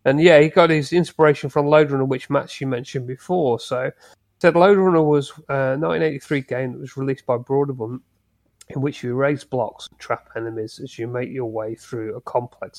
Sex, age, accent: male, 30-49, British